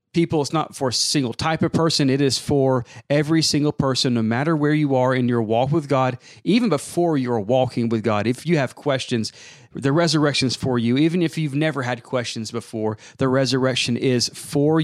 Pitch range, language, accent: 125-160 Hz, English, American